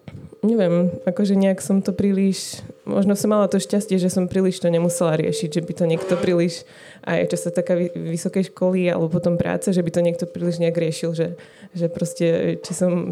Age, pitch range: 20-39, 170-185 Hz